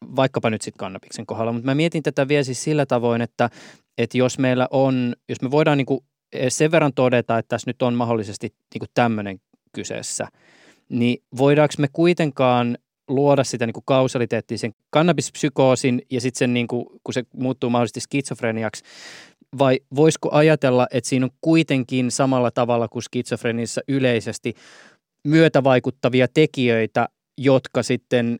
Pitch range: 120-140 Hz